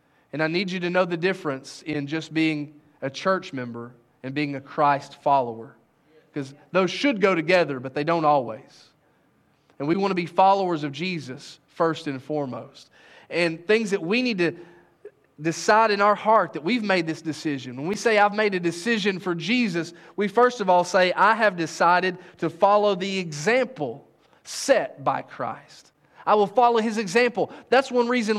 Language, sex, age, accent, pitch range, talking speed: English, male, 30-49, American, 155-215 Hz, 180 wpm